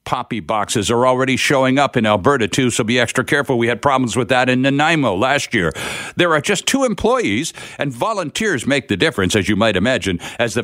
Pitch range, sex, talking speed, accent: 115-170 Hz, male, 215 wpm, American